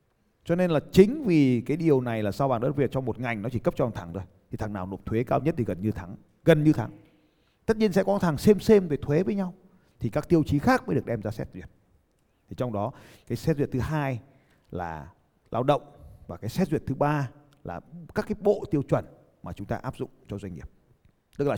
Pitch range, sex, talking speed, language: 100-150 Hz, male, 255 wpm, Vietnamese